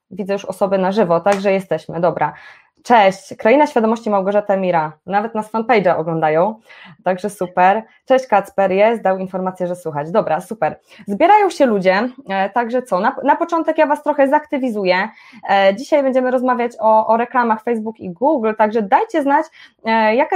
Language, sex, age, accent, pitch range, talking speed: Polish, female, 20-39, native, 190-260 Hz, 155 wpm